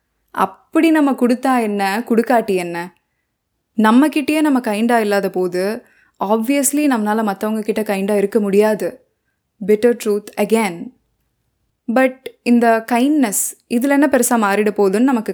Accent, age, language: native, 20-39, Tamil